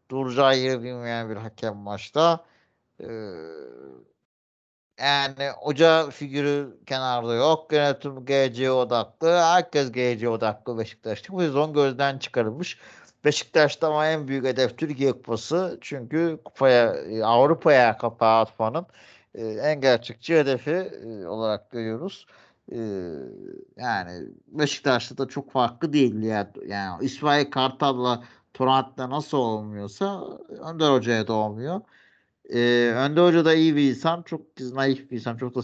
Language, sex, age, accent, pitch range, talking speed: Turkish, male, 50-69, native, 120-150 Hz, 120 wpm